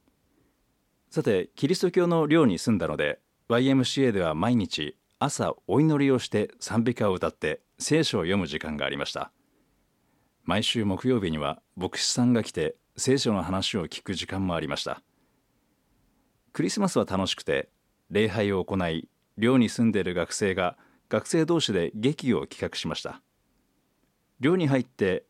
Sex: male